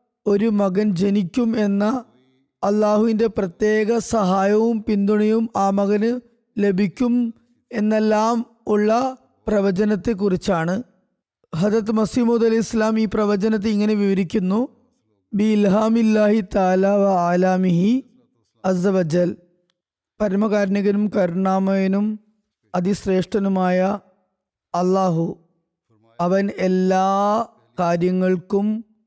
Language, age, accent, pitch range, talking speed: Malayalam, 20-39, native, 180-215 Hz, 70 wpm